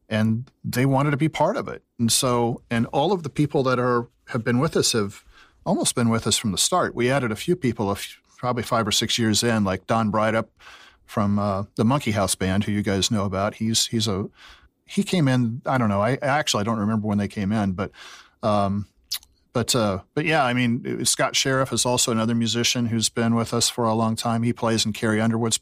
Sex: male